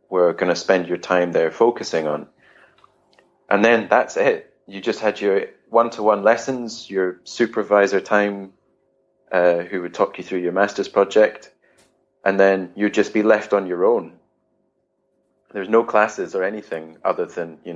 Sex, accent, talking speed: male, British, 160 wpm